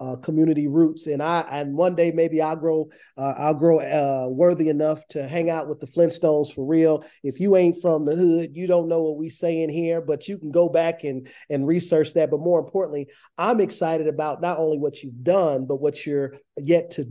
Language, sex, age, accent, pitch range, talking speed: English, male, 40-59, American, 140-165 Hz, 225 wpm